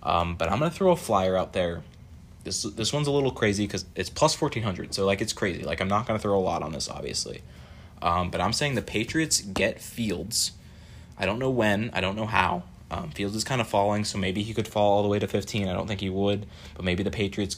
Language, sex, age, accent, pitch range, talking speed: English, male, 20-39, American, 90-105 Hz, 260 wpm